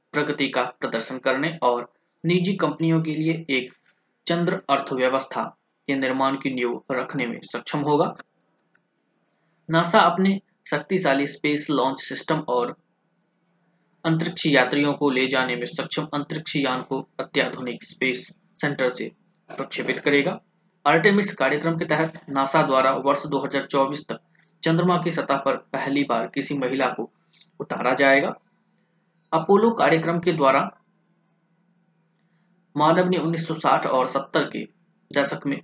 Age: 20-39